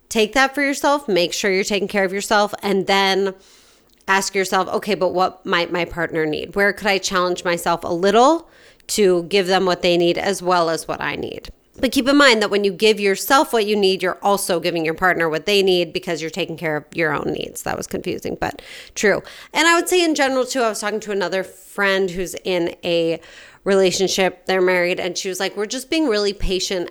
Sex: female